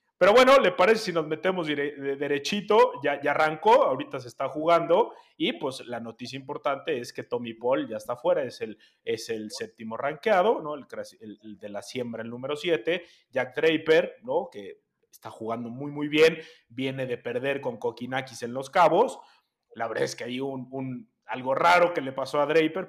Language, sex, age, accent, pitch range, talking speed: Spanish, male, 30-49, Mexican, 125-160 Hz, 200 wpm